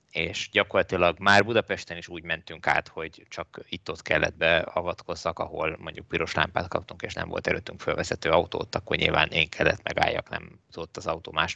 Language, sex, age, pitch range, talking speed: Hungarian, male, 20-39, 80-95 Hz, 180 wpm